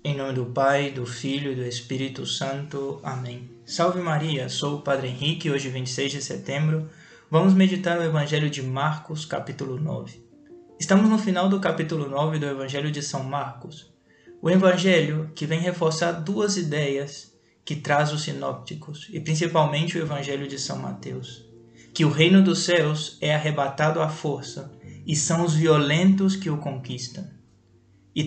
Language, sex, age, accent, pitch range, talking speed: Portuguese, male, 20-39, Brazilian, 140-165 Hz, 160 wpm